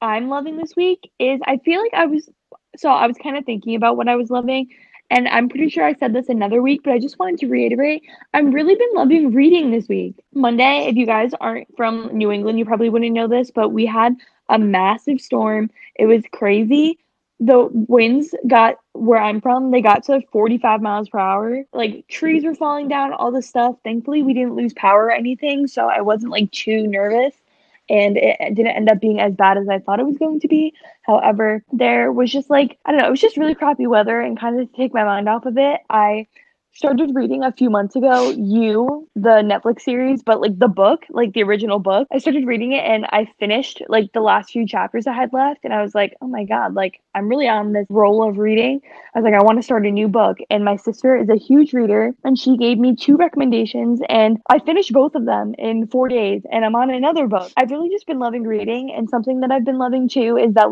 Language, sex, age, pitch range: English, female, 10-29, 220-270 Hz